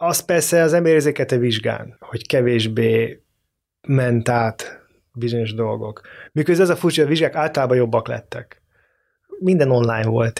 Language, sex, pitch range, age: Hungarian, male, 115-150 Hz, 30-49